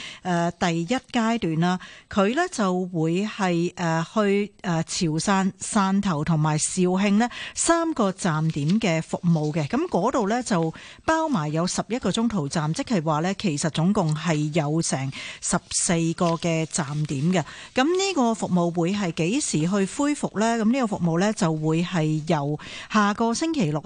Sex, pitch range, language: female, 165-225 Hz, Chinese